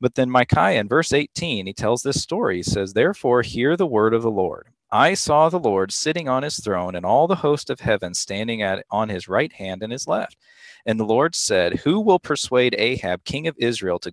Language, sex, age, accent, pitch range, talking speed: English, male, 40-59, American, 100-125 Hz, 230 wpm